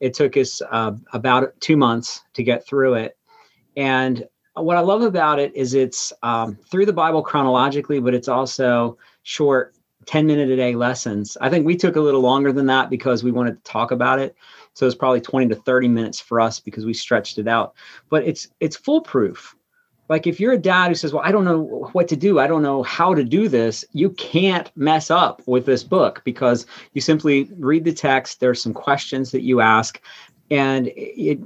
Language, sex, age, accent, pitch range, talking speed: English, male, 40-59, American, 120-155 Hz, 205 wpm